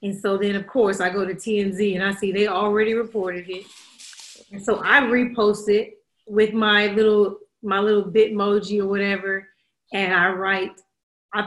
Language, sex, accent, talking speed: English, female, American, 175 wpm